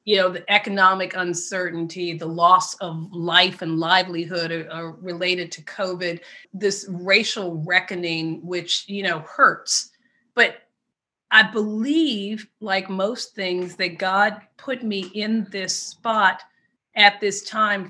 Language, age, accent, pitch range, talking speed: English, 40-59, American, 180-220 Hz, 130 wpm